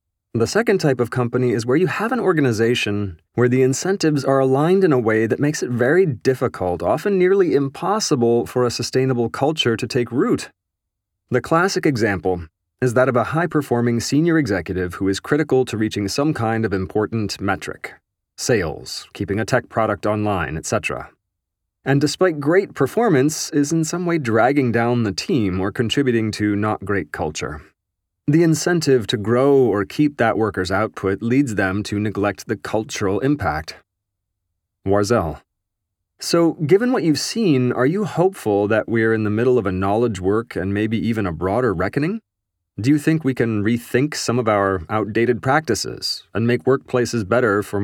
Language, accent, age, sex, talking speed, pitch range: English, American, 30-49, male, 165 wpm, 100-135 Hz